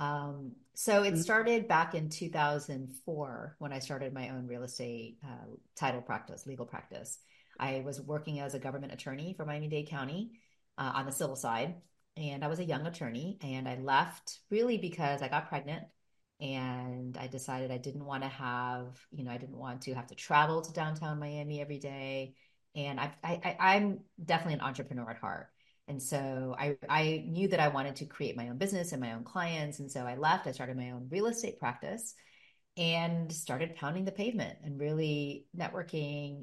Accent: American